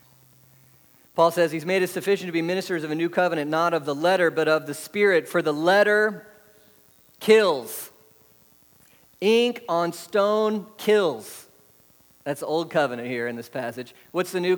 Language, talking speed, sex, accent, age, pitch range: English, 165 wpm, male, American, 40-59, 130-175 Hz